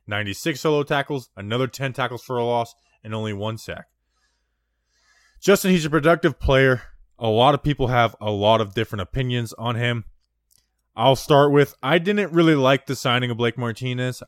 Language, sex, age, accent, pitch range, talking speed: English, male, 20-39, American, 110-145 Hz, 175 wpm